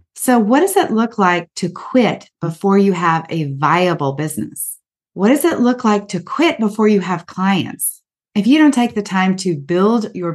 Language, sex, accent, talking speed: English, female, American, 195 wpm